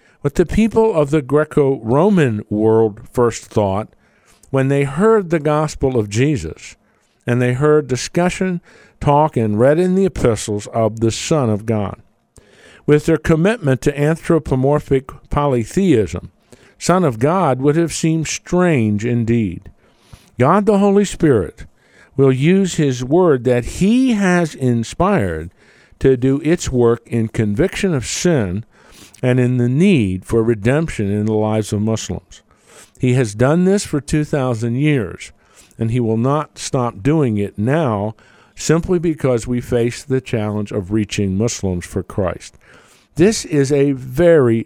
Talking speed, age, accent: 140 wpm, 50-69, American